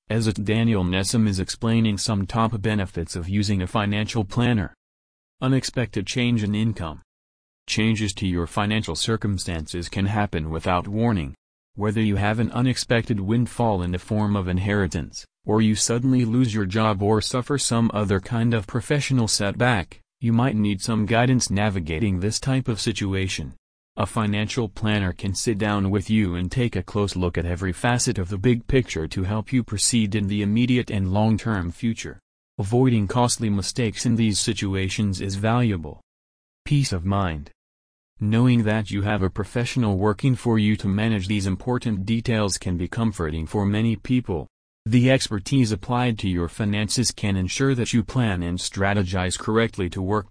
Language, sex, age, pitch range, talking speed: English, male, 40-59, 95-115 Hz, 165 wpm